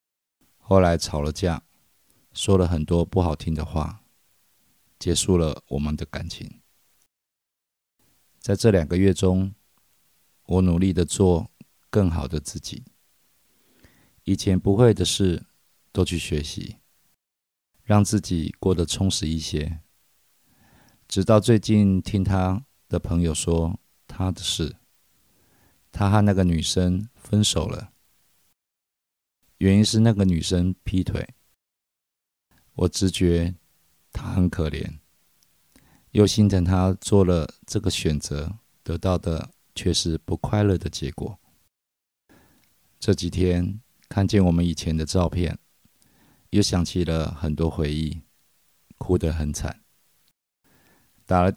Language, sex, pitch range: Chinese, male, 80-95 Hz